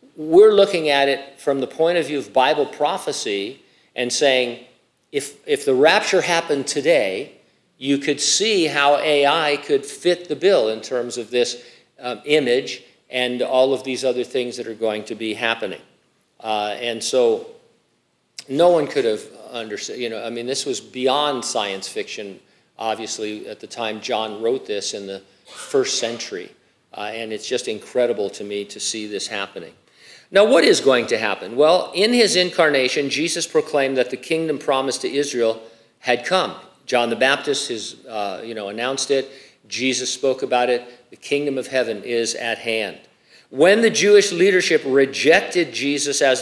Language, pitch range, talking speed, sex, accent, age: English, 120-170 Hz, 170 wpm, male, American, 50-69